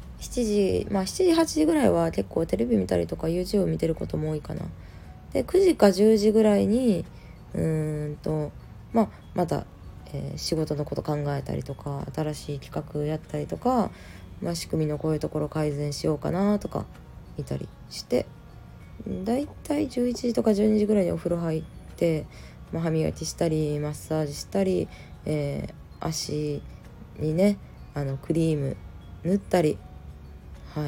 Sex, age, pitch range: female, 20-39, 140-185 Hz